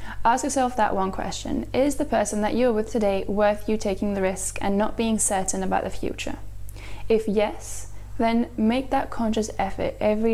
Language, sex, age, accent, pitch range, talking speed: English, female, 10-29, British, 200-235 Hz, 185 wpm